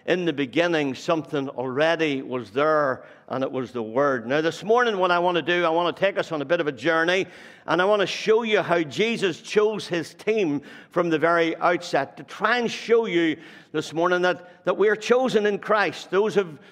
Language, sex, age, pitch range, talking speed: English, male, 60-79, 160-200 Hz, 225 wpm